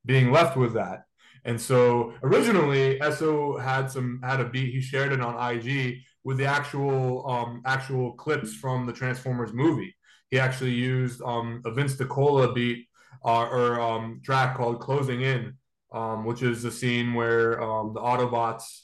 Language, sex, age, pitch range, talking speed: English, male, 20-39, 115-135 Hz, 165 wpm